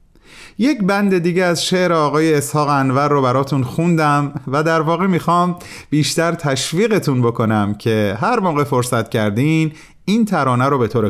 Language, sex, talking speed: Persian, male, 150 wpm